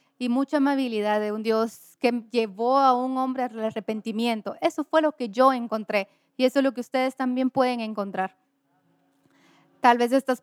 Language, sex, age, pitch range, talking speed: English, female, 20-39, 230-275 Hz, 180 wpm